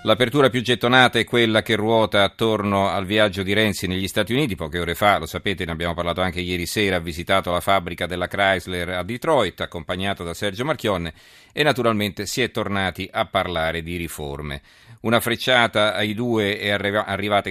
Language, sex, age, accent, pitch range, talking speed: Italian, male, 40-59, native, 90-110 Hz, 180 wpm